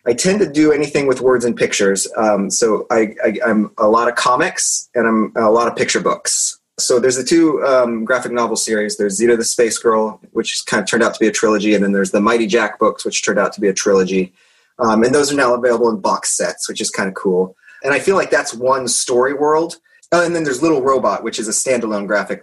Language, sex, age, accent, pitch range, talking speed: English, male, 30-49, American, 105-130 Hz, 250 wpm